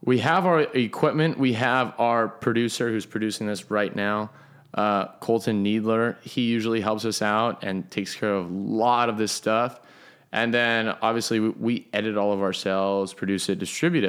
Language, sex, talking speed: English, male, 180 wpm